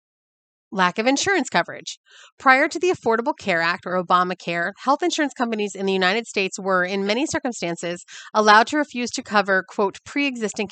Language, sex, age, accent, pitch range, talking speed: English, female, 30-49, American, 185-245 Hz, 170 wpm